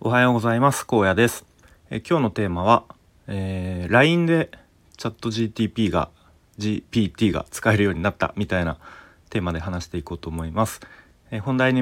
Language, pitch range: Japanese, 85-105 Hz